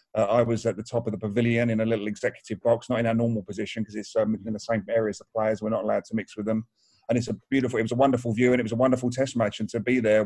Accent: British